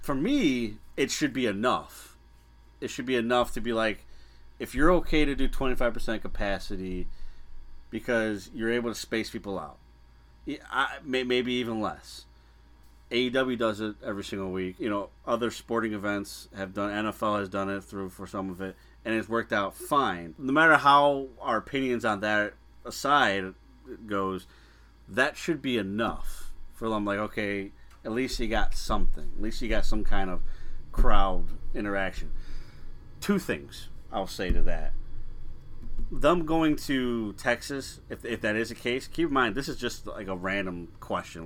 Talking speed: 165 wpm